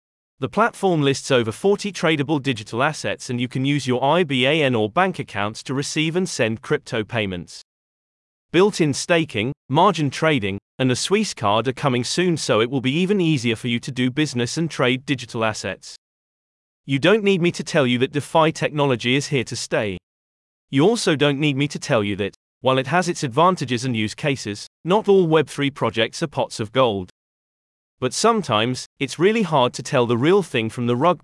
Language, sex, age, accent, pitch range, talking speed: English, male, 30-49, British, 115-160 Hz, 195 wpm